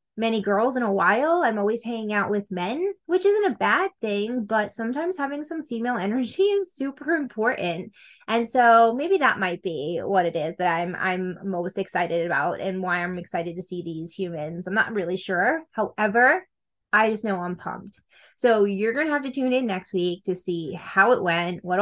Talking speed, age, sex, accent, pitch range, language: 205 wpm, 20-39, female, American, 190-250 Hz, English